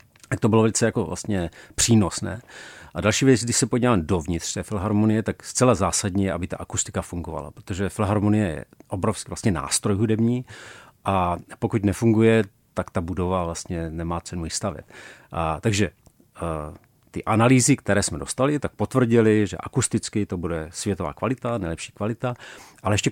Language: Czech